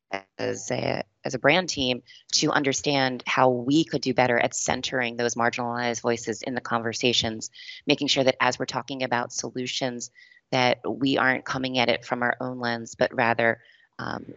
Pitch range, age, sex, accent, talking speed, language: 120-135 Hz, 30-49, female, American, 175 wpm, English